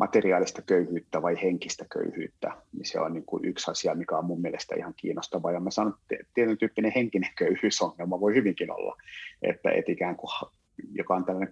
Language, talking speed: Finnish, 180 wpm